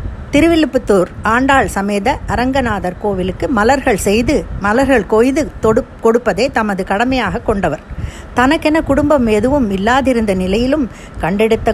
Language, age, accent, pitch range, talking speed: Tamil, 60-79, native, 195-255 Hz, 95 wpm